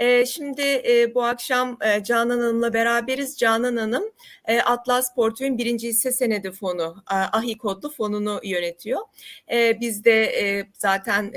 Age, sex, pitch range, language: 30-49, female, 205-260 Hz, Turkish